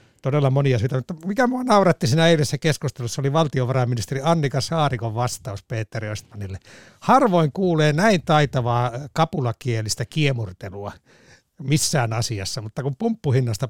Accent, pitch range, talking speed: native, 125-180 Hz, 115 wpm